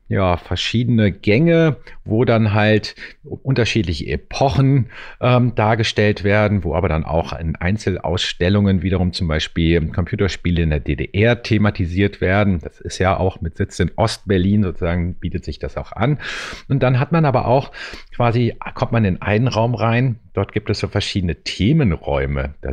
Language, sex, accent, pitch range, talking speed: German, male, German, 90-115 Hz, 160 wpm